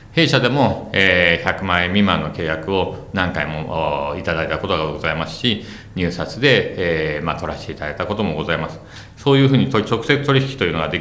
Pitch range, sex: 85-105 Hz, male